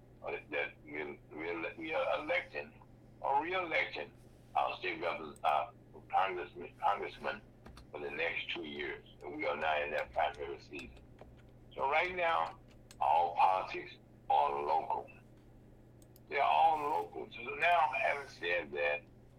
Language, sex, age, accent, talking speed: English, male, 60-79, American, 130 wpm